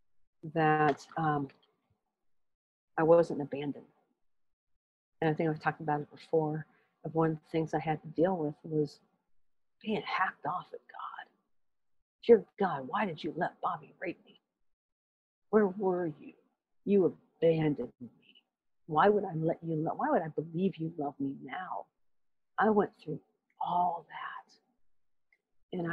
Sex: female